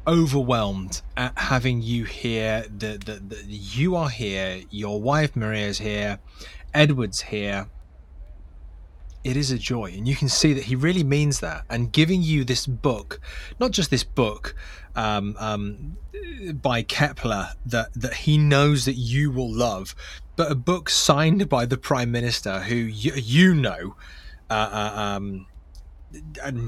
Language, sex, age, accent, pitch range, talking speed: English, male, 20-39, British, 80-130 Hz, 150 wpm